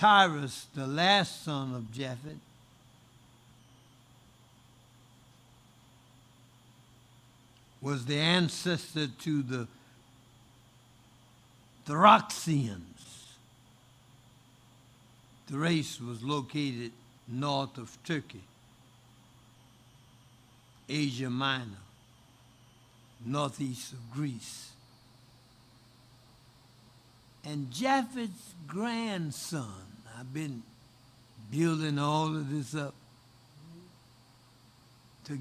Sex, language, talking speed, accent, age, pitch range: male, English, 60 wpm, American, 60-79, 120-145 Hz